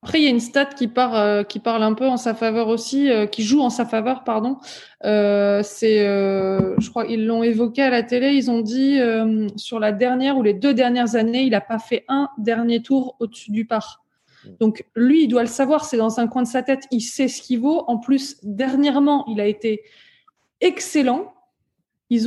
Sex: female